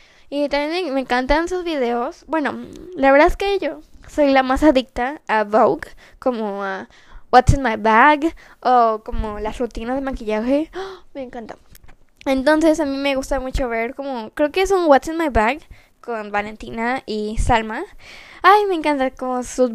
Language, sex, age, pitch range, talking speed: Spanish, female, 10-29, 230-295 Hz, 175 wpm